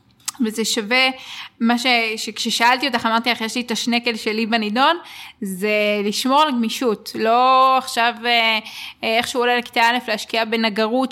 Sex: female